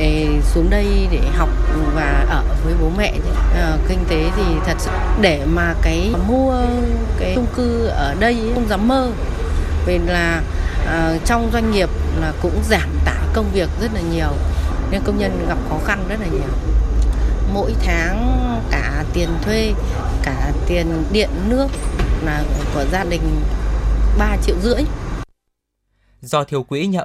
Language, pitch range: Vietnamese, 95-155 Hz